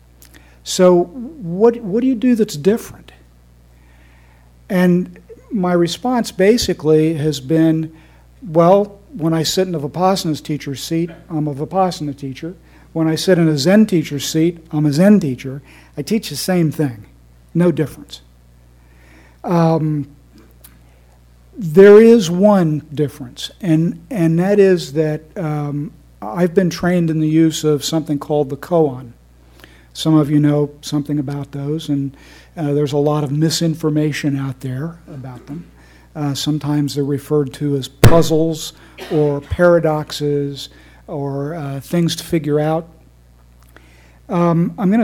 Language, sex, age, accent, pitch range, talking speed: English, male, 50-69, American, 135-170 Hz, 140 wpm